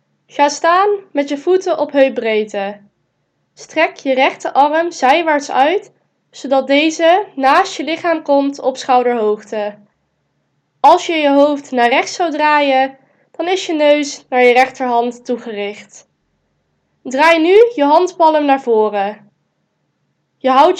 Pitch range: 250-325 Hz